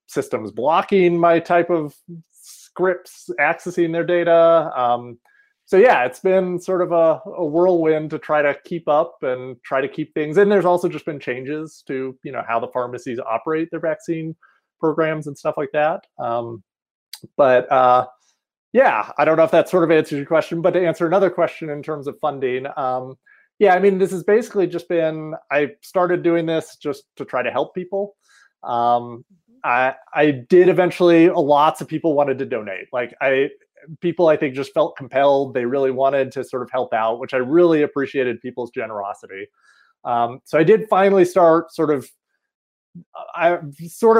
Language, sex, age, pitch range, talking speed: English, male, 30-49, 130-175 Hz, 180 wpm